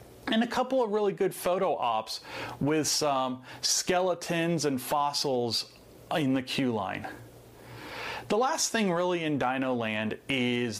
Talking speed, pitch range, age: 140 wpm, 120-170 Hz, 40-59